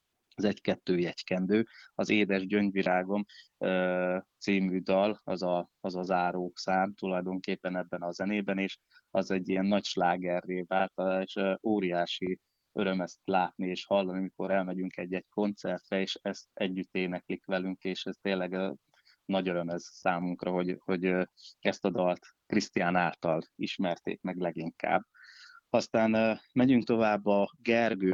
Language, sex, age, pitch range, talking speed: Hungarian, male, 20-39, 90-100 Hz, 130 wpm